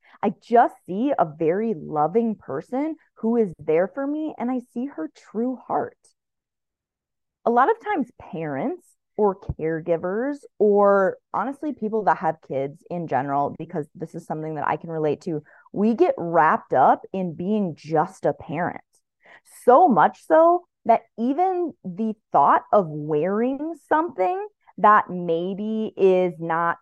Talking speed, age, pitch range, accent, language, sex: 145 wpm, 20-39, 175-260 Hz, American, English, female